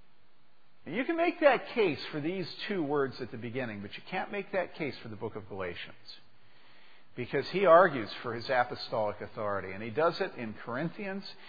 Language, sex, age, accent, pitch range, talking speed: English, male, 50-69, American, 120-180 Hz, 190 wpm